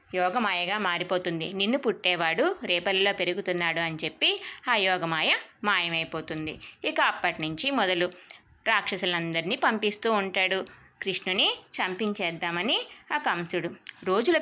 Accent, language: native, Telugu